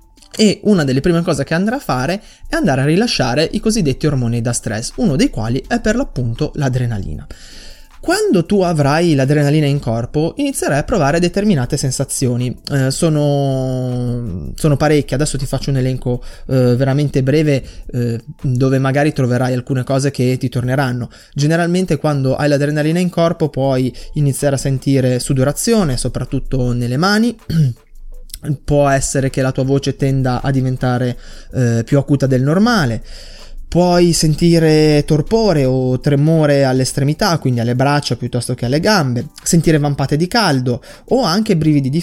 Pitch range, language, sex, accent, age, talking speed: 125-160 Hz, Italian, male, native, 20-39, 150 wpm